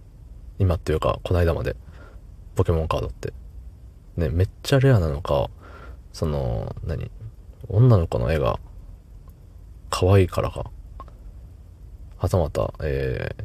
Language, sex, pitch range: Japanese, male, 80-100 Hz